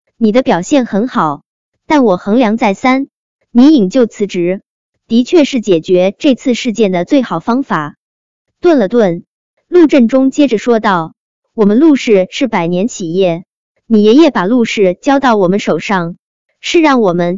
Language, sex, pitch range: Chinese, male, 190-275 Hz